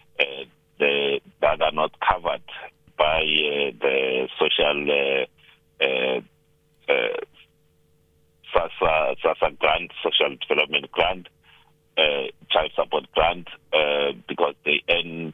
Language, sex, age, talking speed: English, male, 50-69, 95 wpm